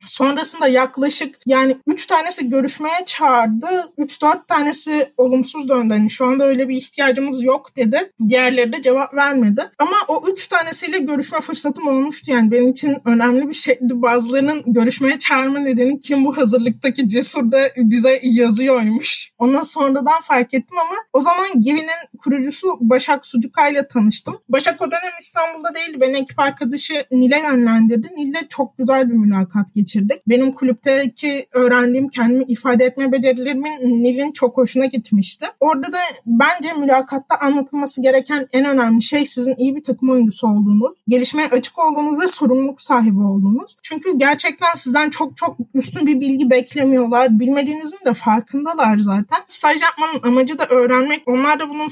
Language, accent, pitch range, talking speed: Turkish, native, 250-300 Hz, 150 wpm